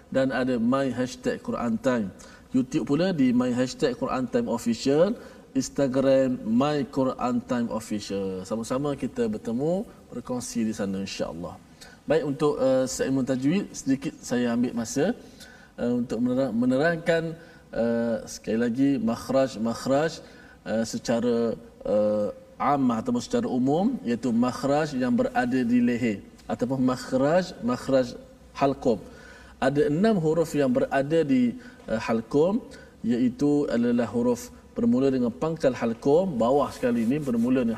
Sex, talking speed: male, 125 wpm